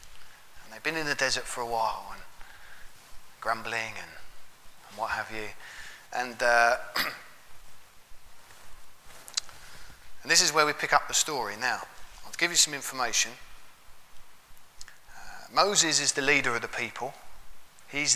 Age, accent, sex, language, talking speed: 30-49, British, male, English, 135 wpm